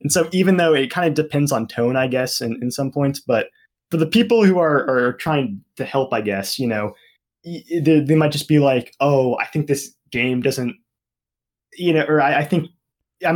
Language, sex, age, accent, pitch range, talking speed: English, male, 20-39, American, 120-155 Hz, 220 wpm